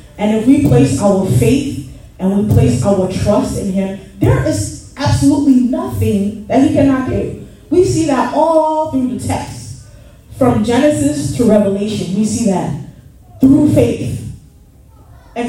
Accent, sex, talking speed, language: American, female, 145 wpm, English